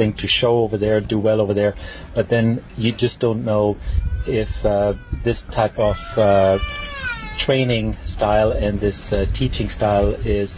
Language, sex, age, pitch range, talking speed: English, male, 40-59, 100-115 Hz, 160 wpm